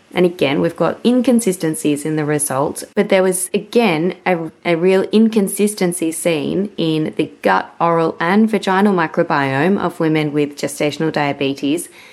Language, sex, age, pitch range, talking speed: English, female, 20-39, 155-200 Hz, 145 wpm